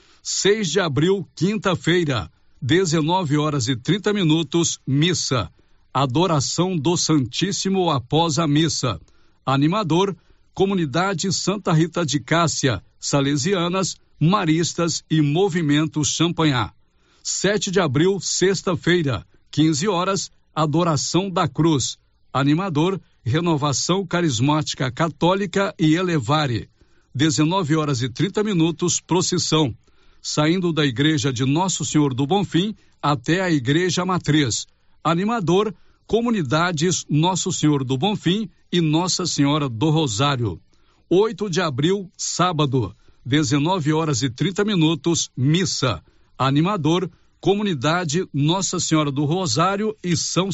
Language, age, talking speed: Portuguese, 60-79, 105 wpm